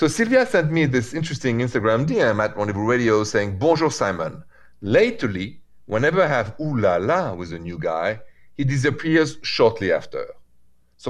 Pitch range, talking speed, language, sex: 105-140 Hz, 150 wpm, English, male